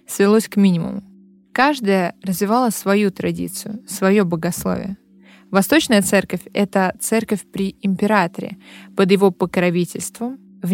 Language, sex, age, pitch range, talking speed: Russian, female, 20-39, 185-220 Hz, 105 wpm